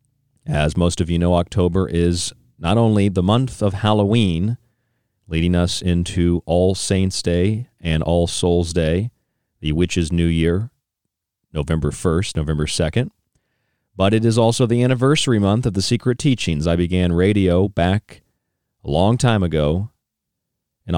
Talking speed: 145 wpm